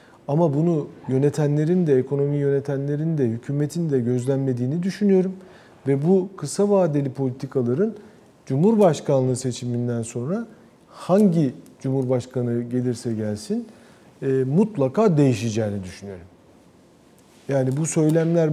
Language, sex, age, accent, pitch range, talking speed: Turkish, male, 40-59, native, 125-165 Hz, 95 wpm